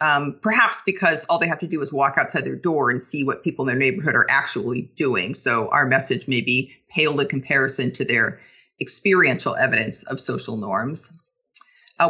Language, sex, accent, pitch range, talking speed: English, female, American, 140-185 Hz, 195 wpm